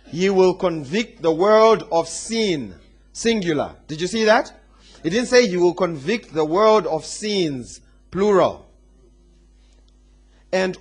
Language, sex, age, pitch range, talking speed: English, male, 40-59, 165-235 Hz, 135 wpm